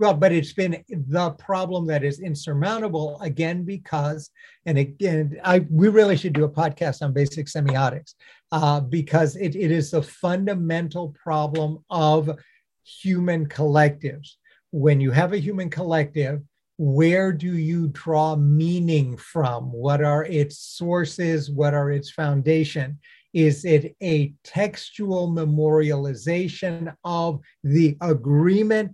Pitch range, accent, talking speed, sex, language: 150-180 Hz, American, 130 wpm, male, English